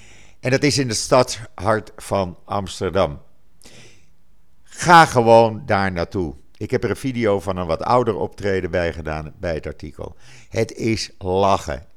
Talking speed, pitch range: 150 wpm, 90-120 Hz